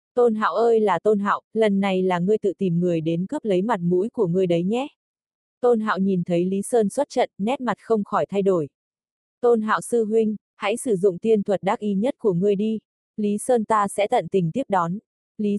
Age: 20-39